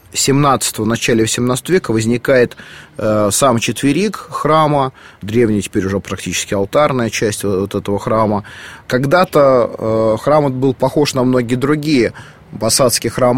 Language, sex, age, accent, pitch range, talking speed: Russian, male, 30-49, native, 115-145 Hz, 130 wpm